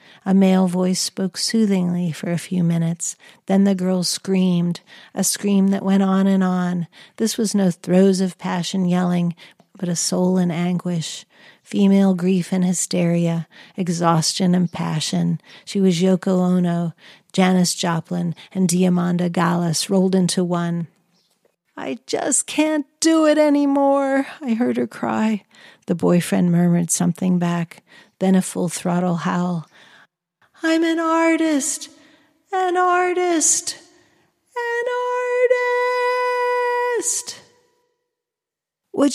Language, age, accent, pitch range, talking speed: English, 50-69, American, 175-225 Hz, 120 wpm